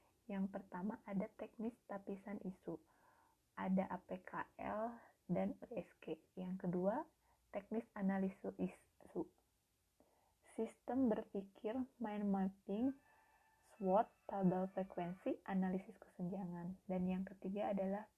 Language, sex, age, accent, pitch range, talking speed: Indonesian, female, 20-39, native, 185-215 Hz, 90 wpm